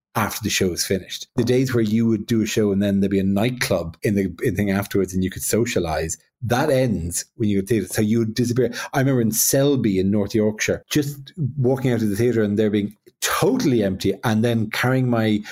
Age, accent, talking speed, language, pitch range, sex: 30-49, Irish, 235 wpm, English, 100-125 Hz, male